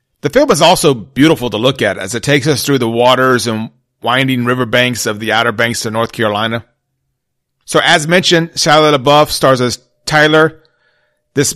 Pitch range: 125-155 Hz